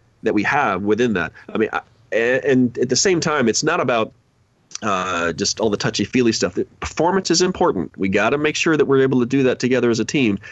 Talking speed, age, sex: 235 wpm, 30-49, male